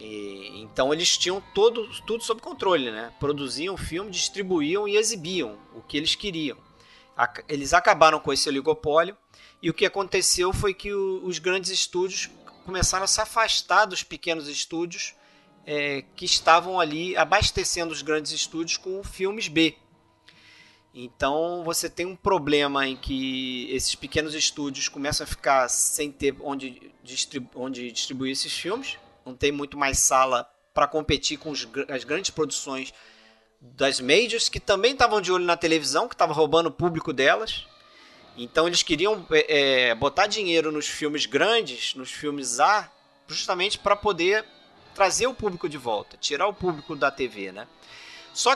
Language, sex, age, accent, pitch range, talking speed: Portuguese, male, 30-49, Brazilian, 140-195 Hz, 150 wpm